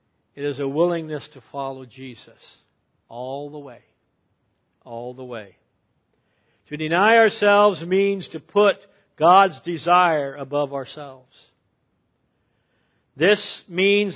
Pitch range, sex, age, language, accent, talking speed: 125-175 Hz, male, 60-79, English, American, 105 wpm